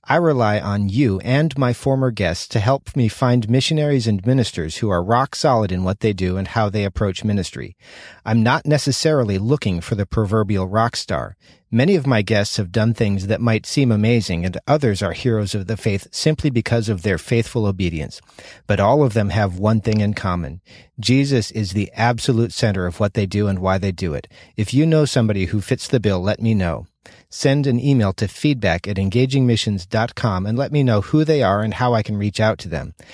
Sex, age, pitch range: male, 40-59, 105-135 Hz